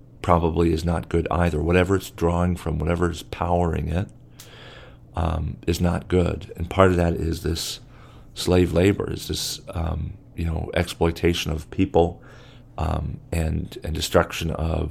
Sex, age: male, 40-59